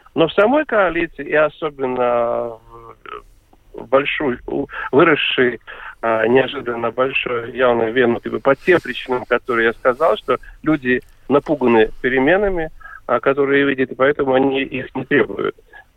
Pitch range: 125-165 Hz